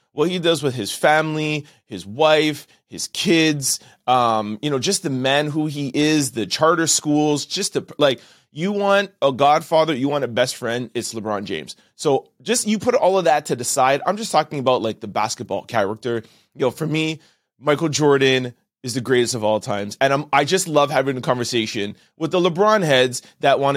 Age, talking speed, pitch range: 30-49, 200 wpm, 120-155 Hz